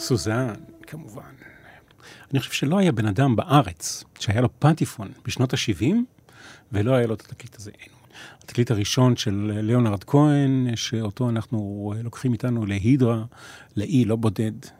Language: Hebrew